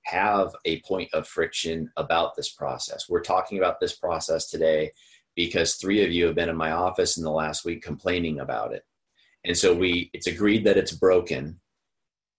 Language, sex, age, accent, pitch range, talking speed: English, male, 30-49, American, 80-120 Hz, 185 wpm